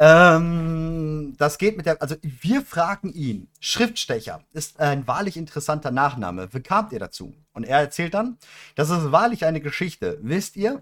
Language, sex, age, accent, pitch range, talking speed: German, male, 40-59, German, 135-175 Hz, 165 wpm